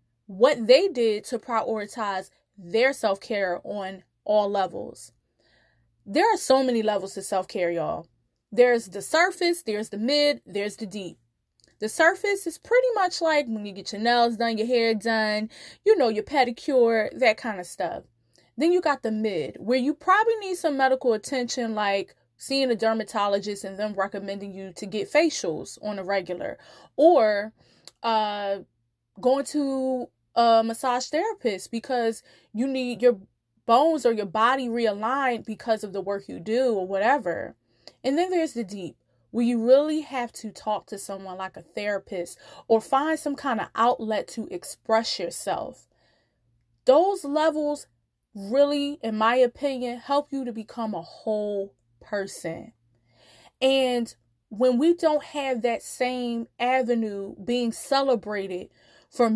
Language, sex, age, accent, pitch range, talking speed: English, female, 20-39, American, 195-260 Hz, 150 wpm